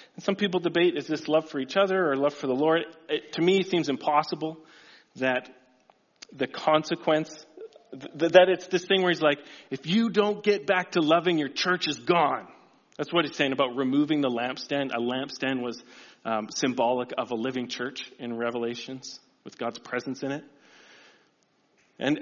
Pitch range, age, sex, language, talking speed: 145-190 Hz, 40-59, male, English, 180 wpm